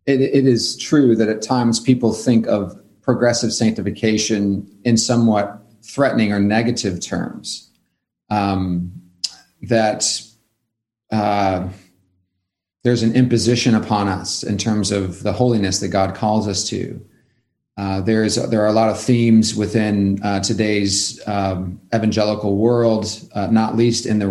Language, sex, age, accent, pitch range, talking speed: English, male, 40-59, American, 100-115 Hz, 135 wpm